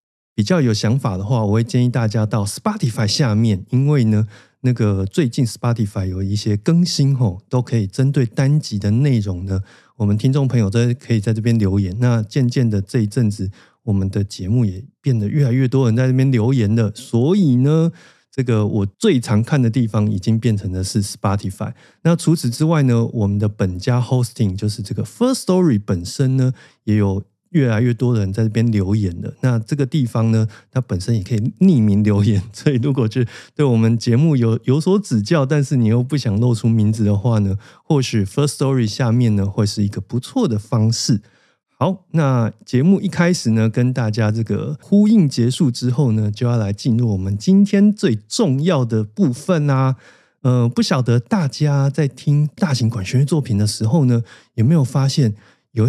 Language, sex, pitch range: Chinese, male, 110-140 Hz